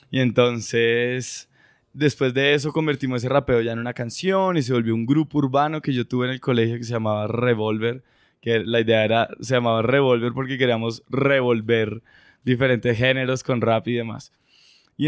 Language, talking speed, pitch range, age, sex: Spanish, 180 wpm, 120-140 Hz, 20-39, male